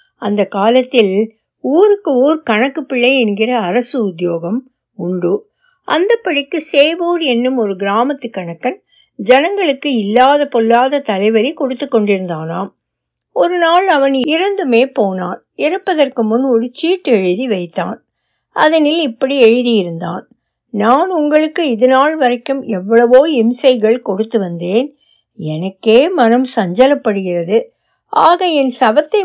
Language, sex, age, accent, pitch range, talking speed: Tamil, female, 60-79, native, 215-300 Hz, 100 wpm